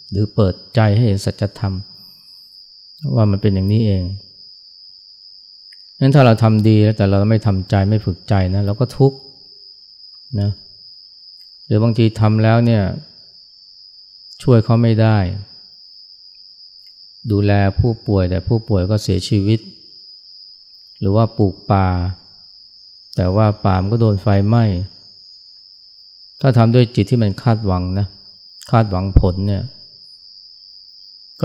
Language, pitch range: Thai, 95-110 Hz